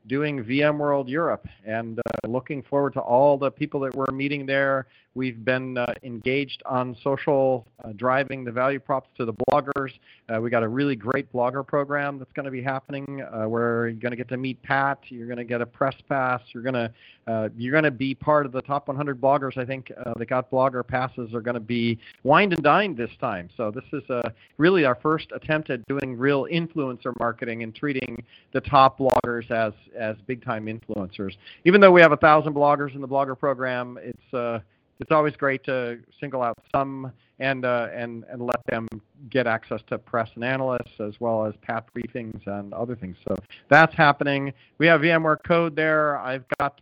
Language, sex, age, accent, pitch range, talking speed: English, male, 40-59, American, 120-140 Hz, 205 wpm